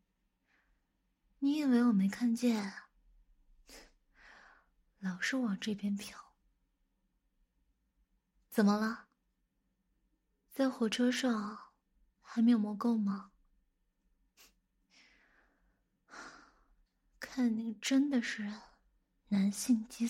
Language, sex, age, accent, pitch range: Chinese, female, 20-39, native, 205-250 Hz